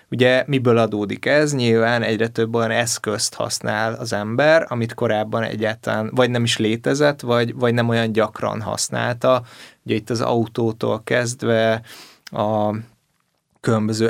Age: 20-39